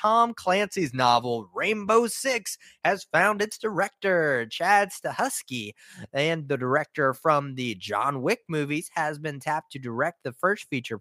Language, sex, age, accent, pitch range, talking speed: English, male, 20-39, American, 130-185 Hz, 145 wpm